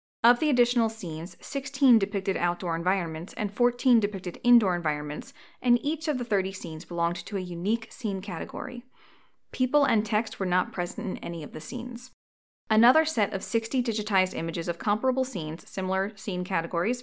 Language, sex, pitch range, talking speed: English, female, 175-240 Hz, 170 wpm